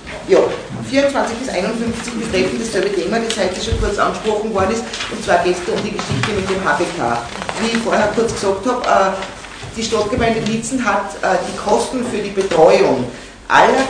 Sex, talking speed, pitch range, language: female, 175 wpm, 175-220 Hz, German